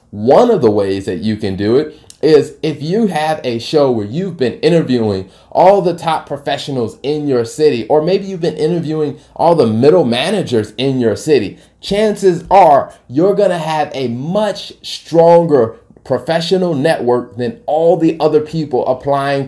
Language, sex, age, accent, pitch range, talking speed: English, male, 30-49, American, 125-170 Hz, 170 wpm